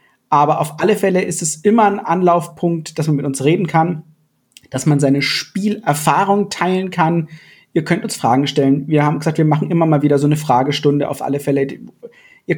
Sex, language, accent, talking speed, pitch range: male, German, German, 195 wpm, 135-170 Hz